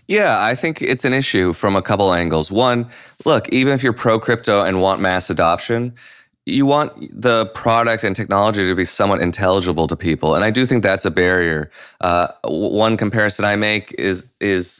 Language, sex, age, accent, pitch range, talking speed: English, male, 30-49, American, 90-115 Hz, 185 wpm